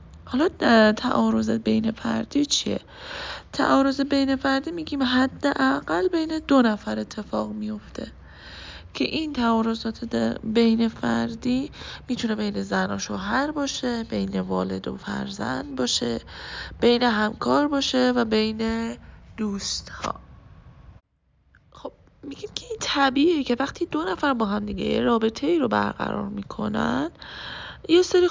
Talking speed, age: 120 wpm, 20-39